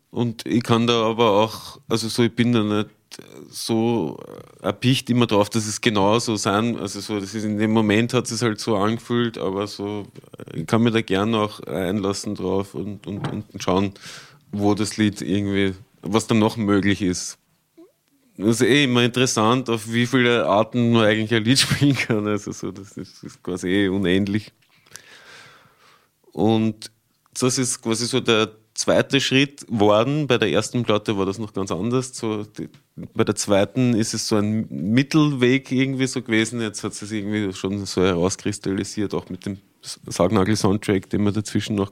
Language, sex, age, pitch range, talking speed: German, male, 30-49, 100-115 Hz, 175 wpm